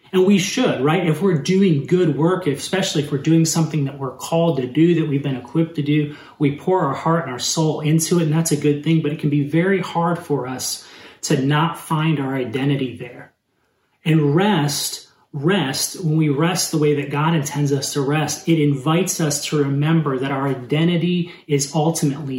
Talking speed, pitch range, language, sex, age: 205 wpm, 135-155 Hz, English, male, 30-49